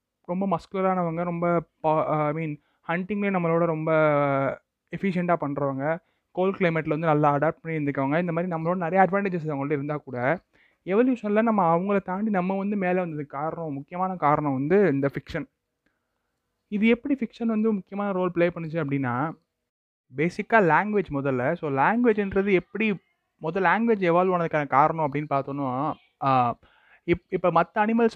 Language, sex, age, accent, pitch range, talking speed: Tamil, male, 20-39, native, 150-195 Hz, 140 wpm